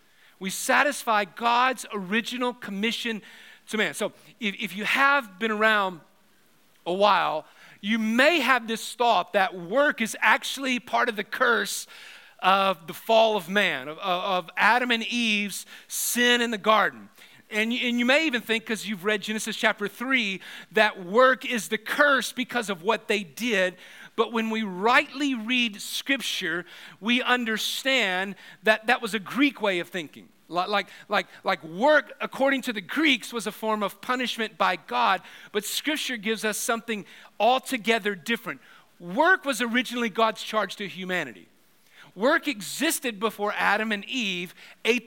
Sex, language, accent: male, English, American